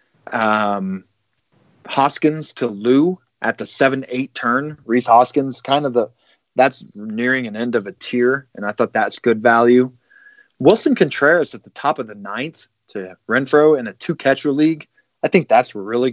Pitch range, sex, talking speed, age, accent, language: 110-130 Hz, male, 170 wpm, 30-49, American, English